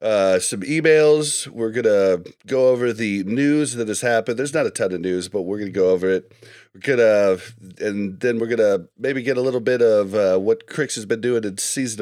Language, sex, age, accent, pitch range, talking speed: English, male, 30-49, American, 100-145 Hz, 220 wpm